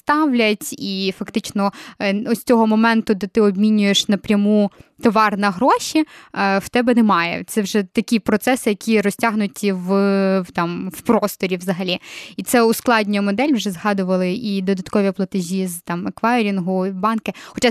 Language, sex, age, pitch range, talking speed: Ukrainian, female, 20-39, 195-230 Hz, 140 wpm